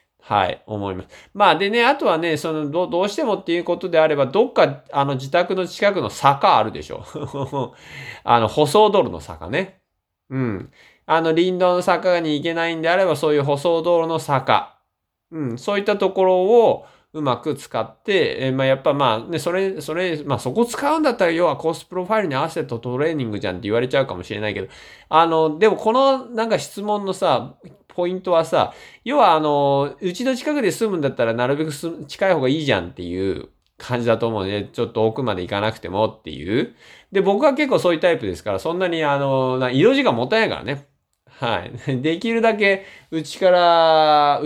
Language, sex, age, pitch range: Japanese, male, 20-39, 125-185 Hz